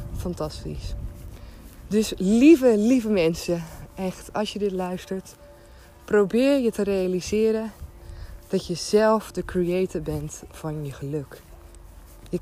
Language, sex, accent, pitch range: Dutch, female, Dutch, 145-205 Hz